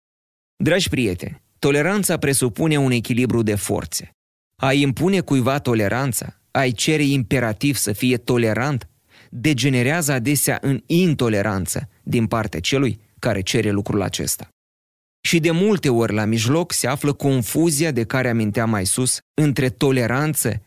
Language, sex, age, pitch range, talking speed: Romanian, male, 30-49, 105-145 Hz, 130 wpm